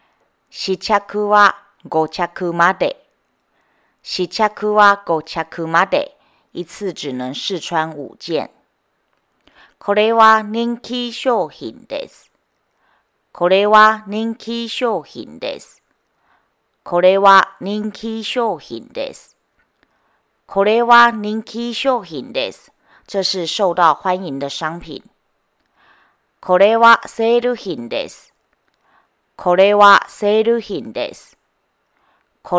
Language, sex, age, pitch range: Japanese, female, 40-59, 165-225 Hz